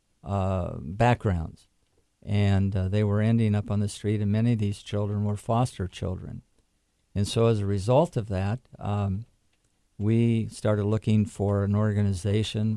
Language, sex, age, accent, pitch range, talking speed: English, male, 50-69, American, 100-115 Hz, 155 wpm